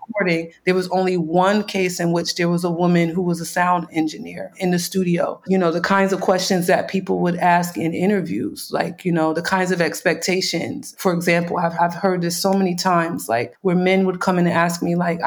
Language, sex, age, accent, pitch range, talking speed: Czech, female, 30-49, American, 175-200 Hz, 230 wpm